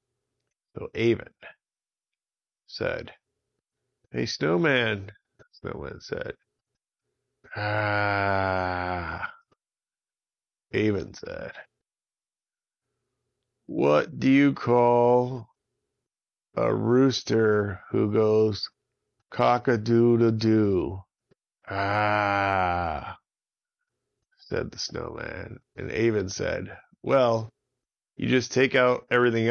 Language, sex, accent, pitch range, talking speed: English, male, American, 100-125 Hz, 75 wpm